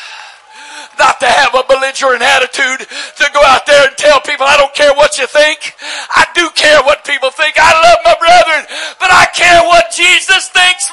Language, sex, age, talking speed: English, male, 60-79, 190 wpm